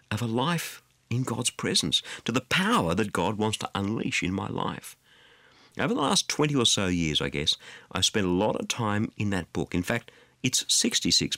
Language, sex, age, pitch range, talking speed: English, male, 50-69, 100-155 Hz, 205 wpm